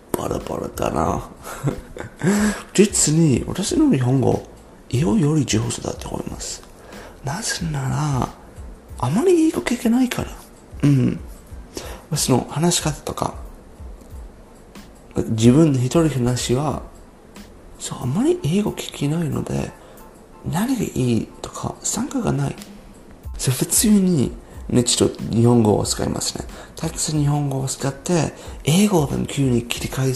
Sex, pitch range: male, 120-170 Hz